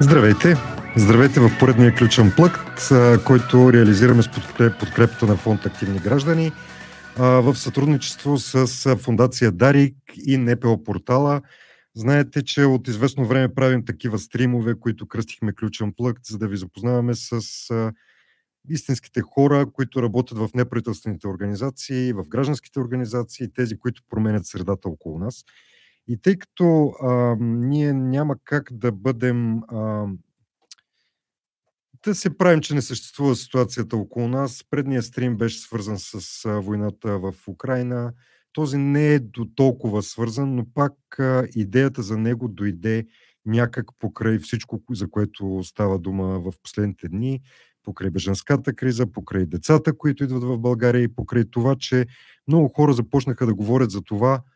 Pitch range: 110-135 Hz